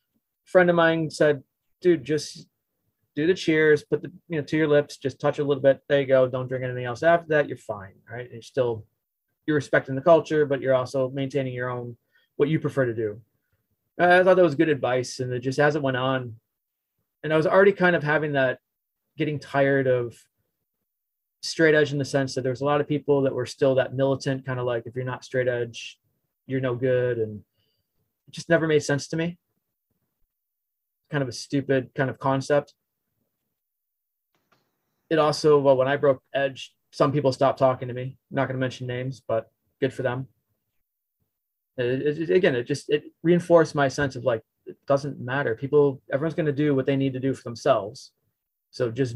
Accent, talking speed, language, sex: American, 200 wpm, English, male